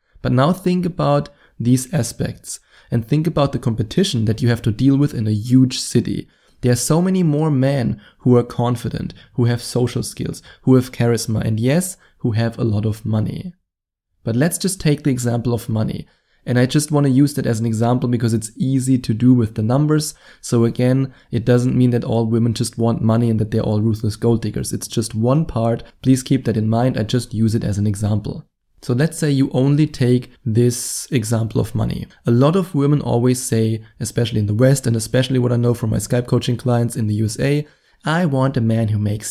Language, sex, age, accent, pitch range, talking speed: English, male, 20-39, German, 115-135 Hz, 220 wpm